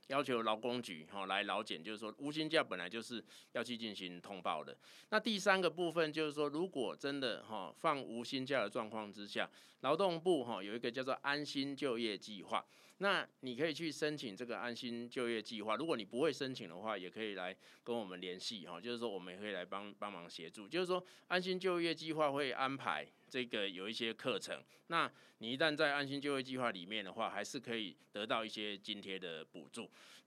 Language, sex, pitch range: Chinese, male, 110-150 Hz